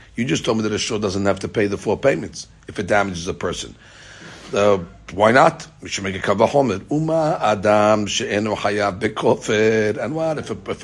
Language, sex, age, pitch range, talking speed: English, male, 60-79, 100-115 Hz, 210 wpm